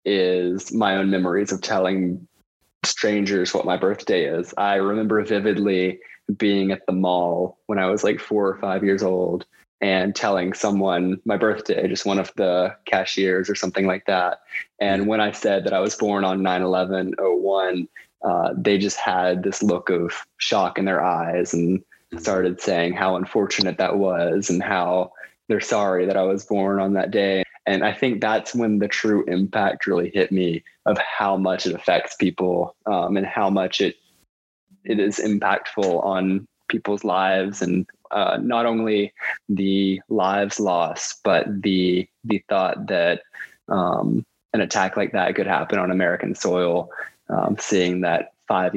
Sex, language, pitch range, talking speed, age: male, English, 90-100 Hz, 165 wpm, 20-39